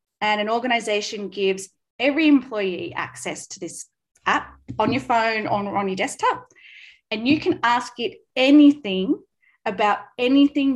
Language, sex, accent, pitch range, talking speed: English, female, Australian, 200-290 Hz, 140 wpm